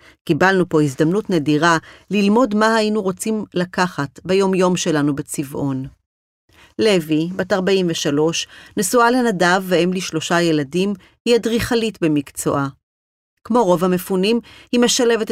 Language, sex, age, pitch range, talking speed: Hebrew, female, 40-59, 155-220 Hz, 110 wpm